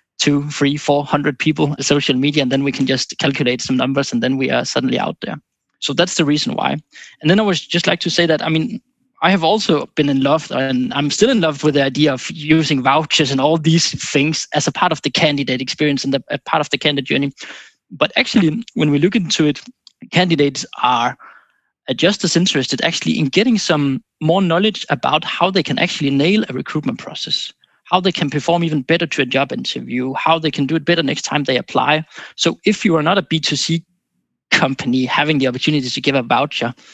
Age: 20-39